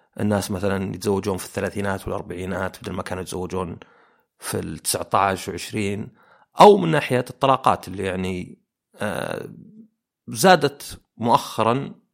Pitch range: 95-130 Hz